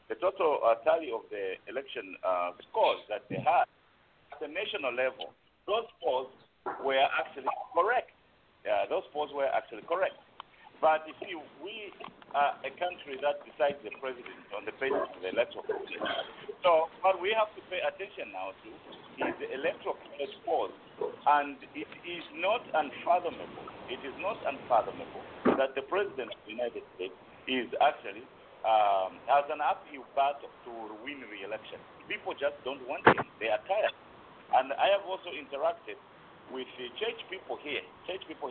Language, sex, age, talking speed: English, male, 50-69, 160 wpm